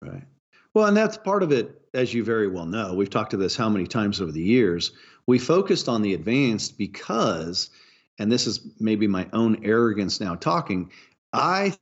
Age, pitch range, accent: 40-59, 105-140 Hz, American